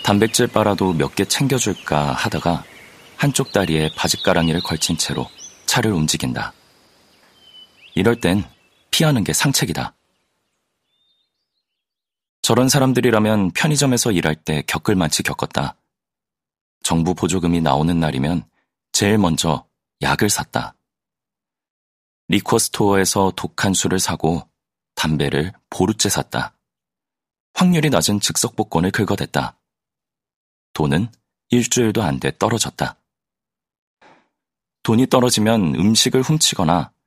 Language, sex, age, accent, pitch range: Korean, male, 30-49, native, 80-115 Hz